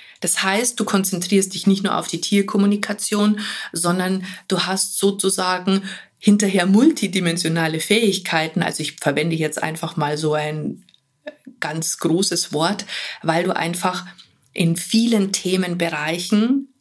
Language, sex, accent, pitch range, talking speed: German, female, German, 165-205 Hz, 120 wpm